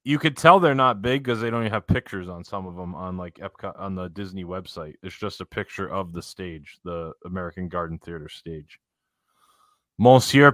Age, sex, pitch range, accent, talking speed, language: 20-39, male, 95-120 Hz, American, 205 wpm, English